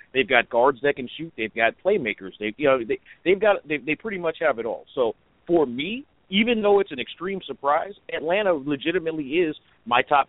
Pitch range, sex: 120-165 Hz, male